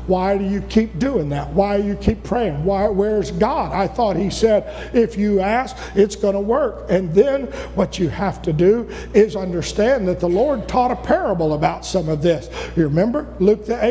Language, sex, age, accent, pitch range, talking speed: English, male, 50-69, American, 190-280 Hz, 205 wpm